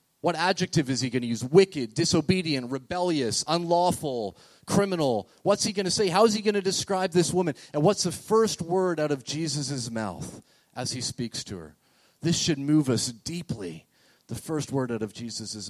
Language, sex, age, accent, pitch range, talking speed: English, male, 30-49, American, 115-150 Hz, 190 wpm